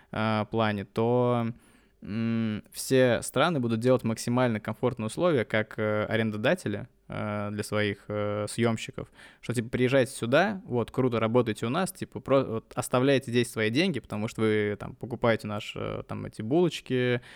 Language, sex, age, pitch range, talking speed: Russian, male, 20-39, 110-125 Hz, 130 wpm